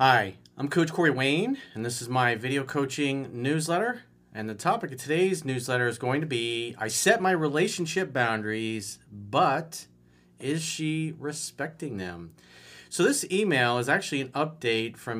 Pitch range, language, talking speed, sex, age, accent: 110-150 Hz, English, 160 wpm, male, 40-59, American